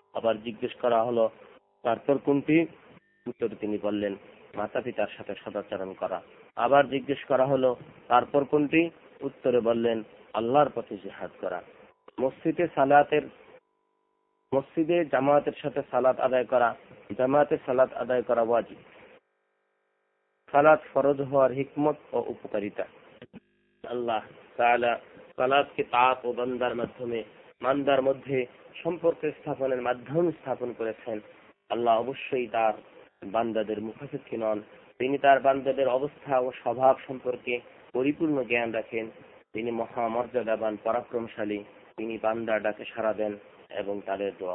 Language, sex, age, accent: Bengali, male, 40-59, native